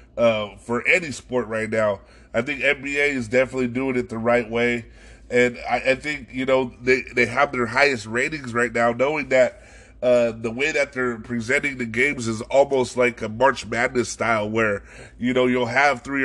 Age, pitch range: 20-39, 120-140 Hz